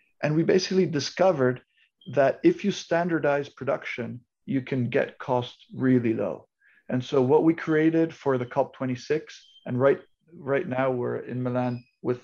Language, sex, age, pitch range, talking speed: English, male, 40-59, 120-145 Hz, 150 wpm